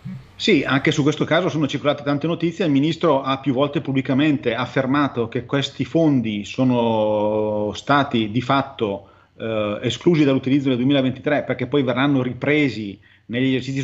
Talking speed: 145 wpm